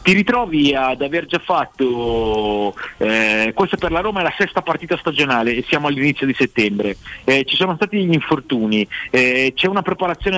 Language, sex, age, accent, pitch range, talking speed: Italian, male, 40-59, native, 120-165 Hz, 180 wpm